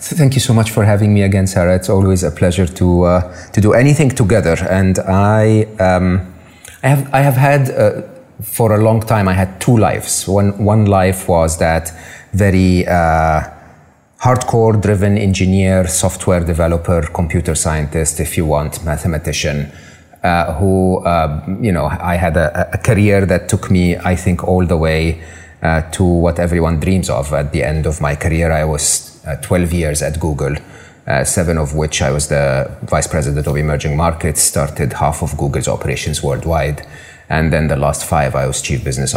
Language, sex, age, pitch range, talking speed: English, male, 30-49, 80-95 Hz, 180 wpm